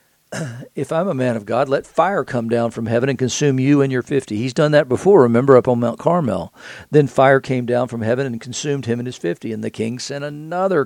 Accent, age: American, 50-69